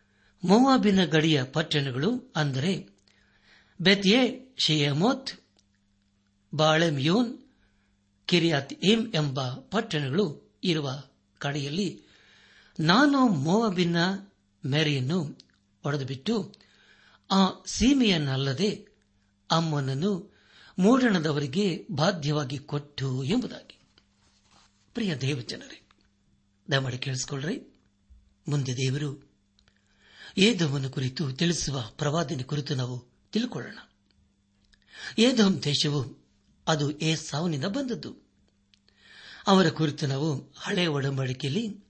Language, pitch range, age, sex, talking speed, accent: Kannada, 125-185 Hz, 60-79, male, 70 wpm, native